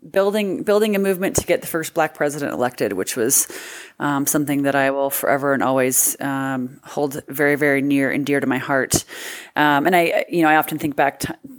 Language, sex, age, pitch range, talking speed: English, female, 30-49, 145-170 Hz, 210 wpm